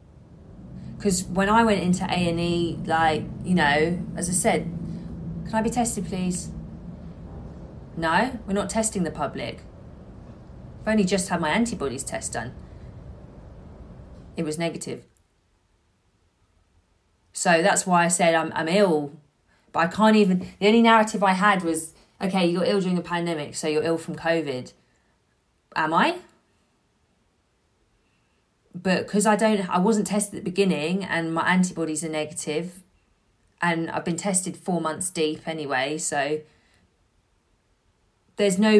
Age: 20-39